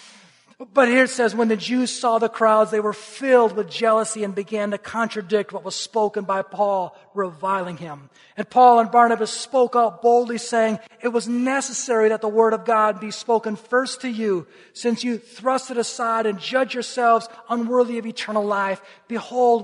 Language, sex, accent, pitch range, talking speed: English, male, American, 190-230 Hz, 185 wpm